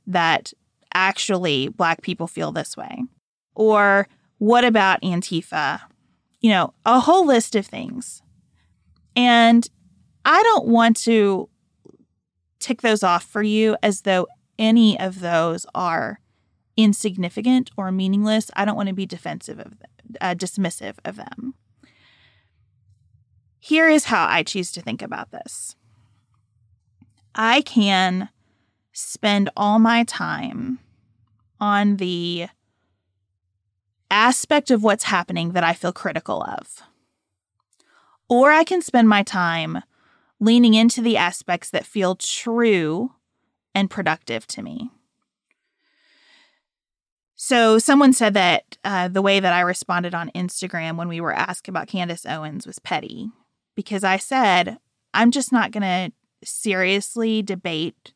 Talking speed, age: 125 wpm, 30-49